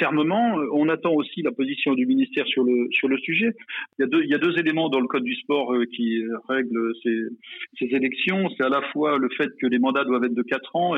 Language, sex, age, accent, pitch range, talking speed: French, male, 40-59, French, 130-165 Hz, 250 wpm